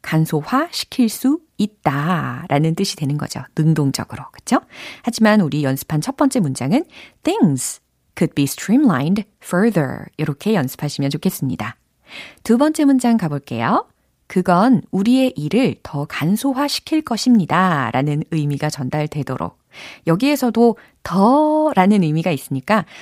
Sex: female